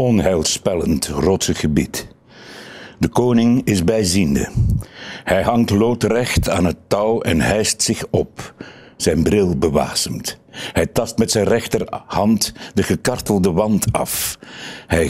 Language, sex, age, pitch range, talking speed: Dutch, male, 60-79, 95-125 Hz, 120 wpm